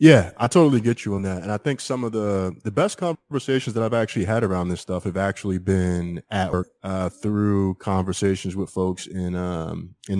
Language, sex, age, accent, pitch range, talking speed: English, male, 20-39, American, 95-110 Hz, 210 wpm